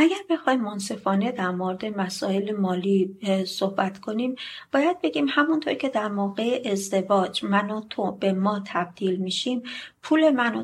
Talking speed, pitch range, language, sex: 145 wpm, 190-250 Hz, Persian, female